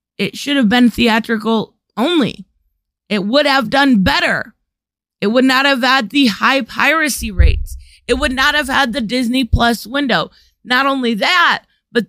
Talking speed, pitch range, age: 165 wpm, 205-275 Hz, 30-49